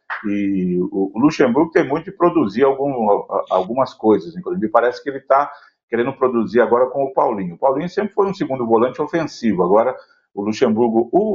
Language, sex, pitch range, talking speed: Portuguese, male, 110-160 Hz, 170 wpm